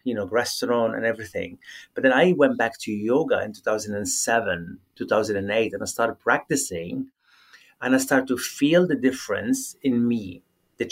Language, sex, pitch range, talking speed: English, male, 110-135 Hz, 160 wpm